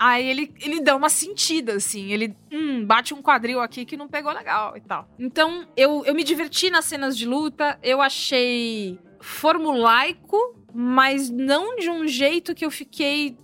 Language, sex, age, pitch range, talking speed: Portuguese, female, 20-39, 220-310 Hz, 175 wpm